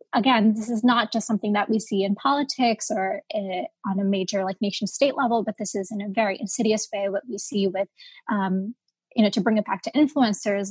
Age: 20-39